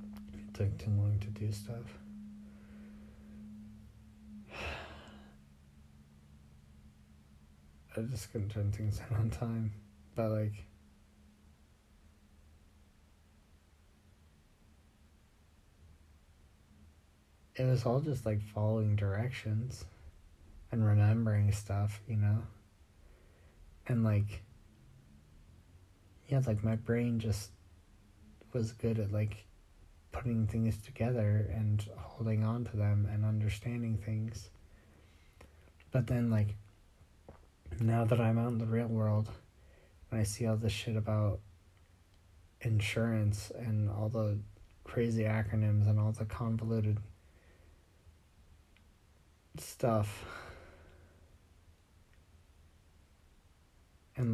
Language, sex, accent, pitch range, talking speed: English, male, American, 80-110 Hz, 90 wpm